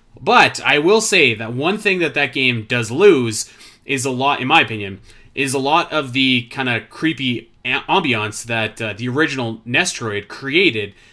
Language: English